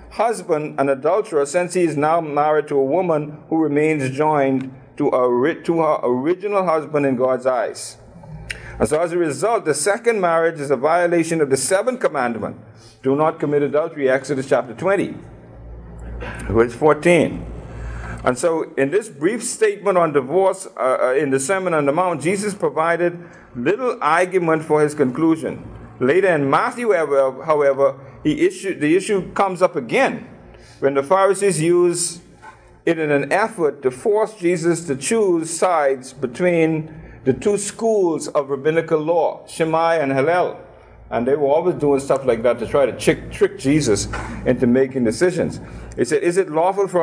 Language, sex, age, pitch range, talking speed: English, male, 50-69, 135-185 Hz, 160 wpm